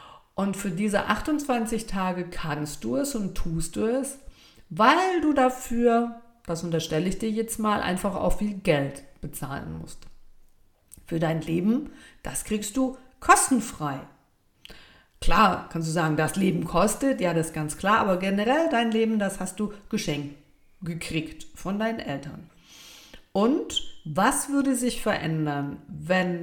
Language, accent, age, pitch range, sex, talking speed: German, German, 50-69, 165-220 Hz, female, 145 wpm